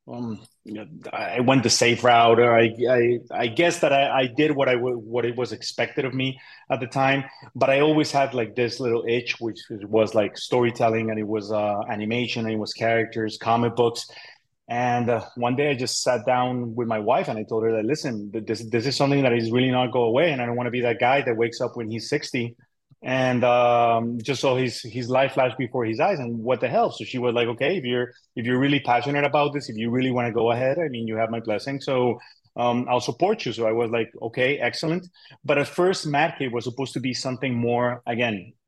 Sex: male